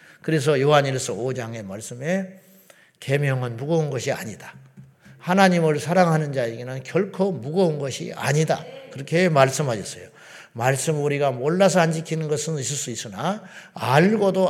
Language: Korean